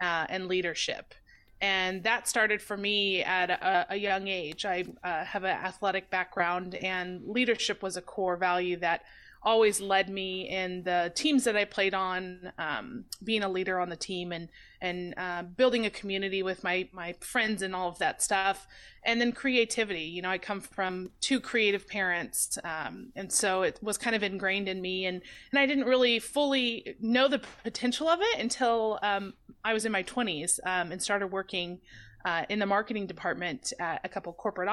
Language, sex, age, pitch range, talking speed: English, female, 30-49, 185-220 Hz, 190 wpm